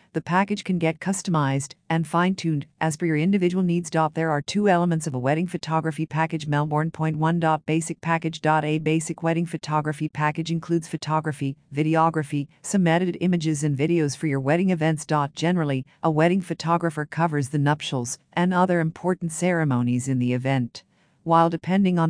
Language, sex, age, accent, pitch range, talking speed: English, female, 50-69, American, 150-170 Hz, 160 wpm